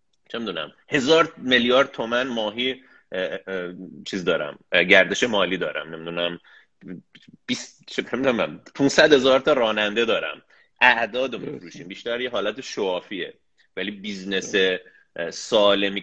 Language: Persian